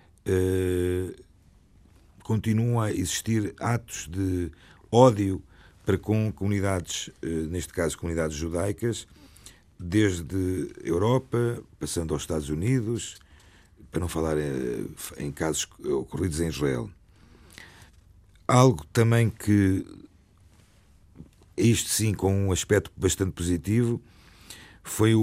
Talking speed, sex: 100 wpm, male